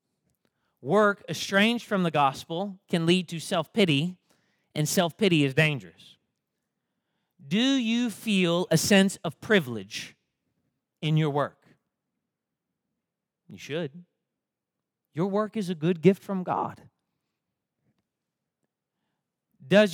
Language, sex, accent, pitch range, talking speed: English, male, American, 145-190 Hz, 100 wpm